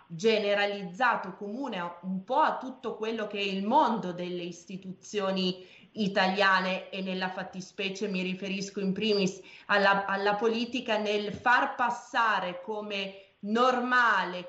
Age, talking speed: 30-49, 120 wpm